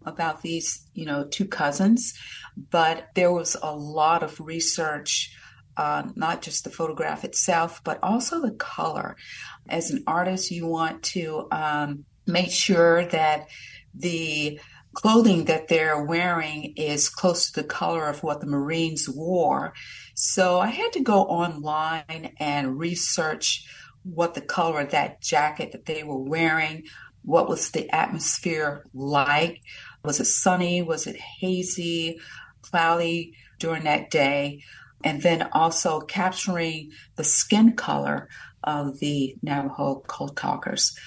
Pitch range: 145-175 Hz